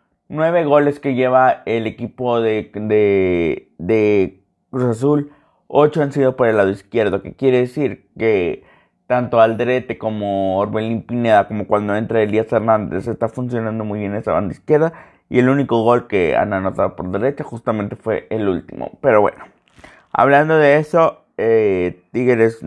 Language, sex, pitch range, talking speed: Spanish, male, 110-135 Hz, 155 wpm